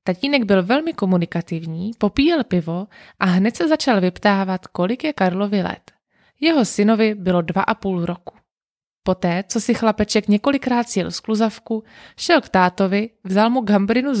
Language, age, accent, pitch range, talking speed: Czech, 20-39, native, 180-225 Hz, 150 wpm